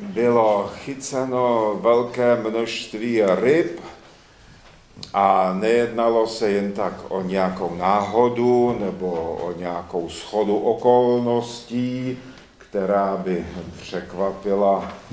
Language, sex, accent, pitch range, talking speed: Czech, male, native, 100-130 Hz, 85 wpm